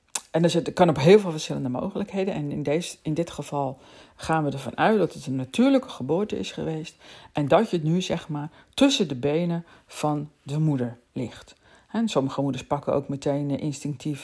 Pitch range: 150-185 Hz